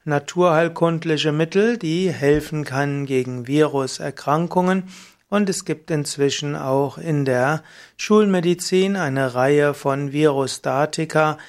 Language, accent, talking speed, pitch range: German, German, 100 wpm, 140-170 Hz